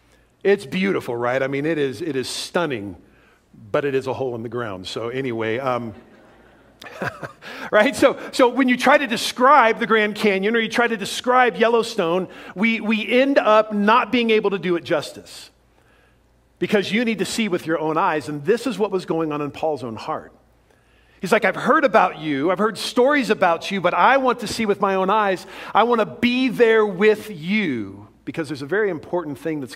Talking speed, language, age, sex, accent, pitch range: 210 wpm, English, 50-69, male, American, 155-225 Hz